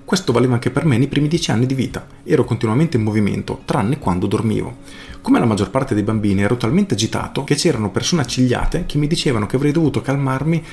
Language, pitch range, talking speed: Italian, 105-130 Hz, 215 wpm